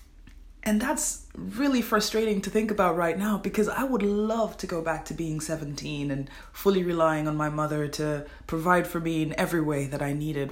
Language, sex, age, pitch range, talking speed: English, female, 20-39, 150-190 Hz, 200 wpm